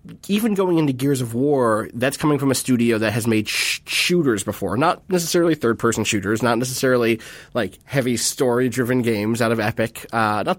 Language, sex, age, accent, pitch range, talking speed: English, male, 30-49, American, 120-160 Hz, 175 wpm